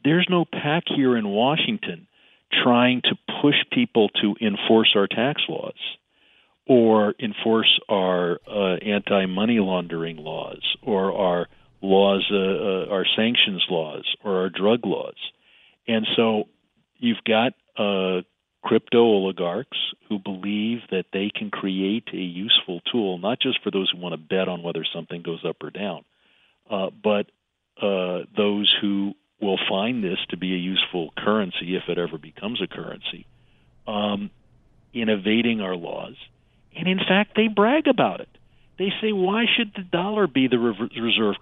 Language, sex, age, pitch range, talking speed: English, male, 50-69, 95-165 Hz, 150 wpm